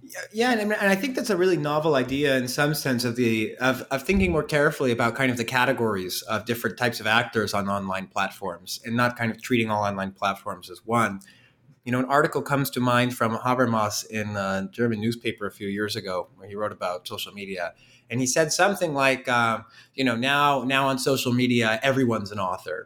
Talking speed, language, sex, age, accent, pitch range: 215 wpm, English, male, 30-49, American, 110-135 Hz